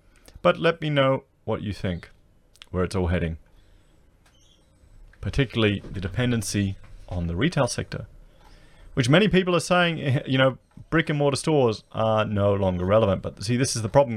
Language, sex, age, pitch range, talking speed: English, male, 30-49, 100-130 Hz, 165 wpm